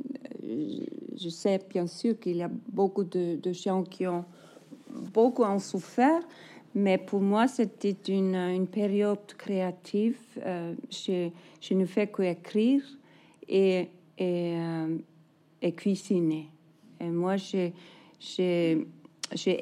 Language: French